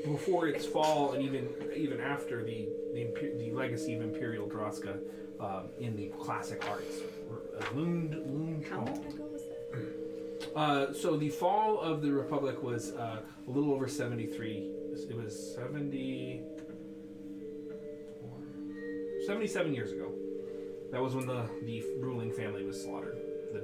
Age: 20-39